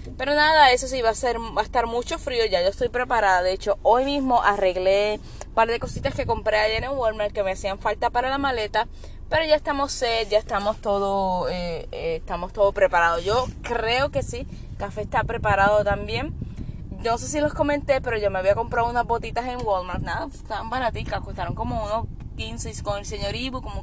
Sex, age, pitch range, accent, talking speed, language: female, 10-29, 210-270 Hz, American, 215 wpm, Spanish